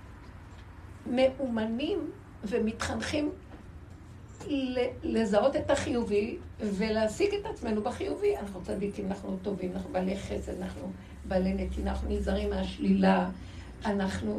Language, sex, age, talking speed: Hebrew, female, 60-79, 95 wpm